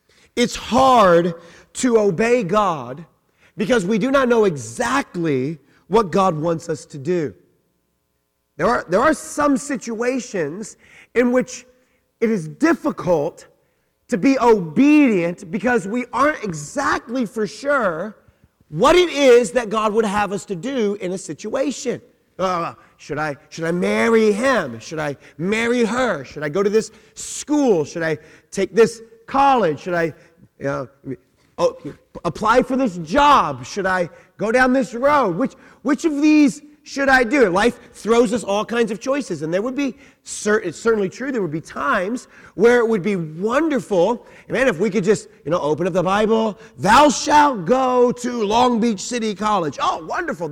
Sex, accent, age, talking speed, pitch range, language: male, American, 30-49, 165 wpm, 180-260 Hz, English